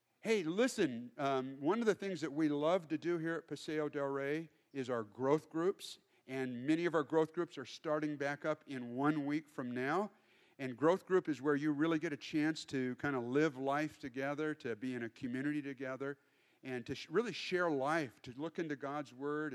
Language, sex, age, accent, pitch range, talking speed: English, male, 50-69, American, 120-155 Hz, 210 wpm